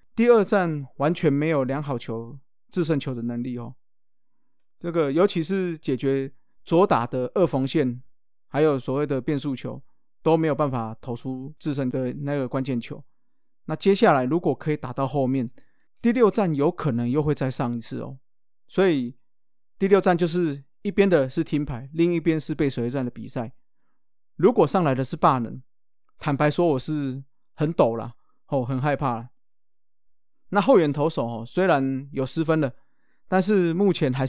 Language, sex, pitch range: Chinese, male, 130-170 Hz